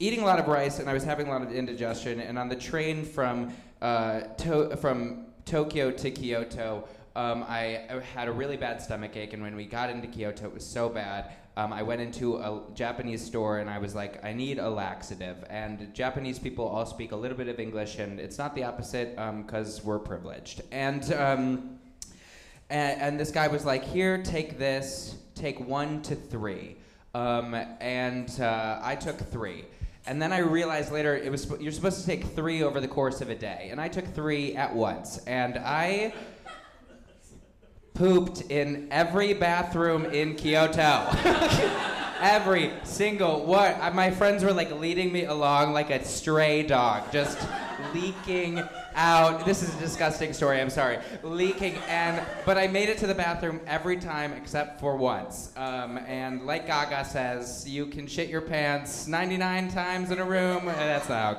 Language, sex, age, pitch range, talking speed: English, male, 20-39, 115-165 Hz, 180 wpm